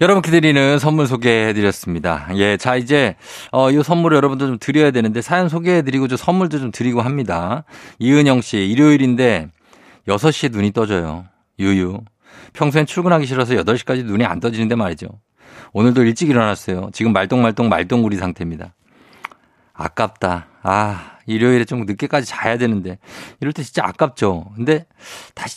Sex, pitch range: male, 105-150 Hz